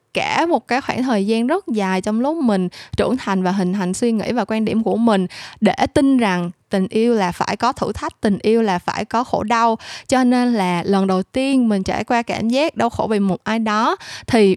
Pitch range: 190-260 Hz